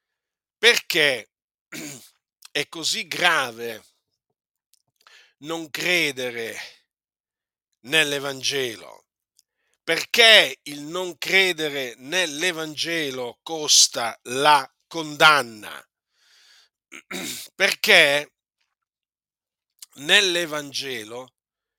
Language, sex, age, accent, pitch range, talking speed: Italian, male, 50-69, native, 150-205 Hz, 45 wpm